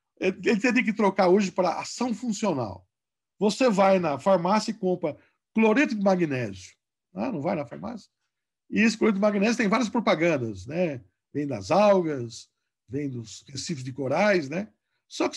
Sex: male